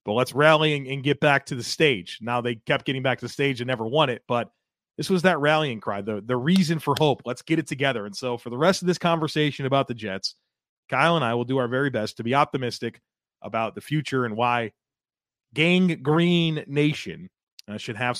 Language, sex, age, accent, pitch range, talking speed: English, male, 30-49, American, 120-160 Hz, 230 wpm